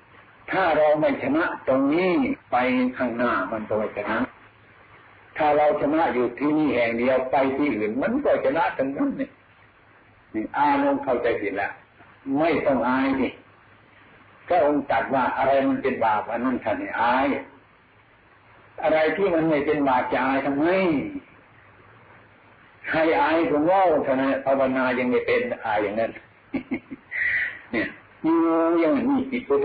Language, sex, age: Thai, male, 60-79